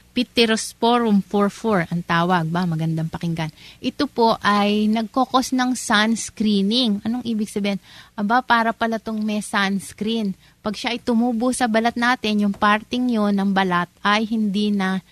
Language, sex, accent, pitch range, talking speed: Filipino, female, native, 180-220 Hz, 145 wpm